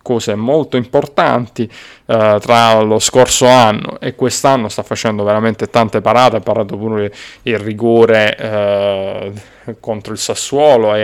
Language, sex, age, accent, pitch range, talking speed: Italian, male, 20-39, native, 110-130 Hz, 135 wpm